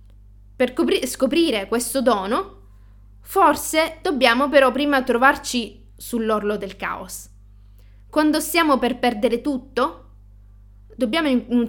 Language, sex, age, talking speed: Italian, female, 20-39, 105 wpm